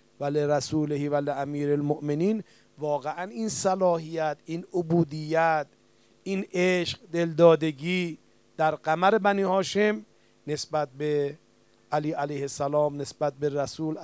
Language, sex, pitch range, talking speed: Persian, male, 115-155 Hz, 105 wpm